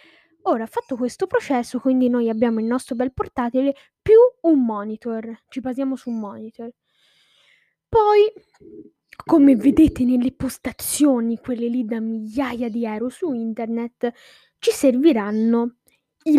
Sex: female